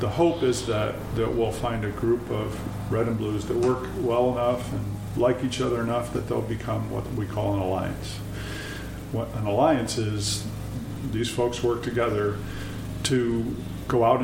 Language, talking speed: English, 175 wpm